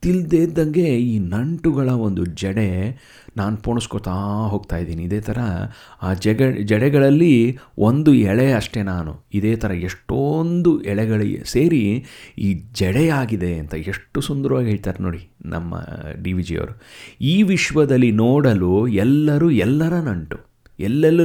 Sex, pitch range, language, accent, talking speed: male, 100-150 Hz, Kannada, native, 115 wpm